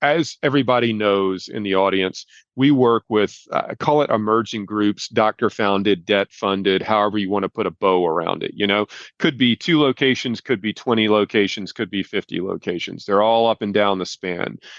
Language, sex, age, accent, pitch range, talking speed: English, male, 40-59, American, 105-130 Hz, 195 wpm